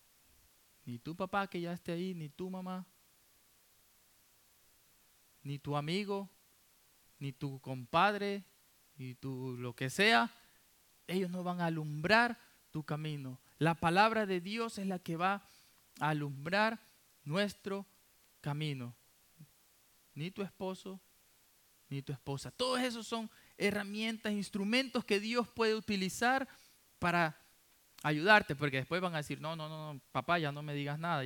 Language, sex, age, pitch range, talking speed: English, male, 20-39, 145-200 Hz, 140 wpm